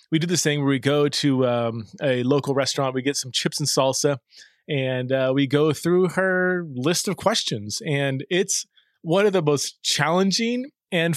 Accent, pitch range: American, 130-190 Hz